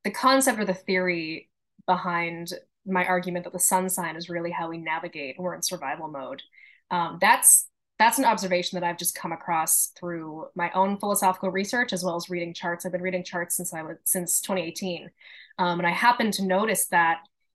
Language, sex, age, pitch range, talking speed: English, female, 20-39, 175-220 Hz, 190 wpm